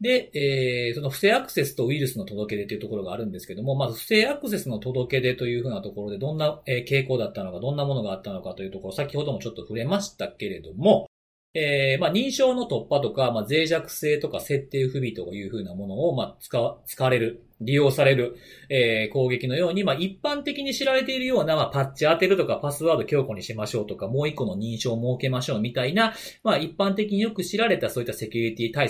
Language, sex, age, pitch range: Japanese, male, 40-59, 125-185 Hz